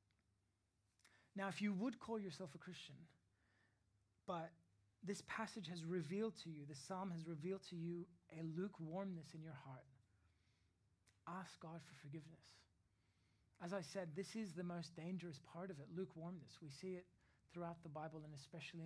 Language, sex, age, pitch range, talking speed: English, male, 30-49, 125-185 Hz, 160 wpm